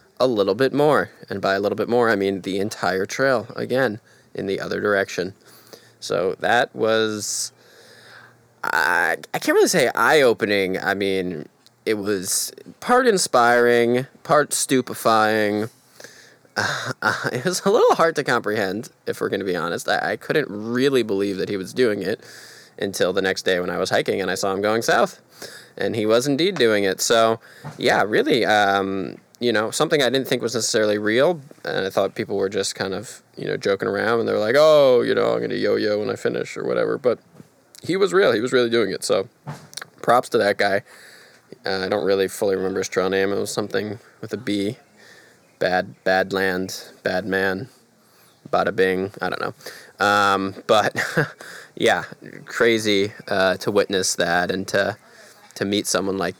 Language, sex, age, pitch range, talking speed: English, male, 20-39, 95-135 Hz, 185 wpm